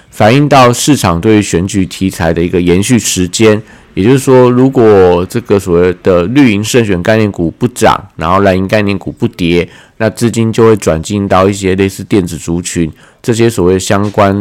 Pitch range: 90-115 Hz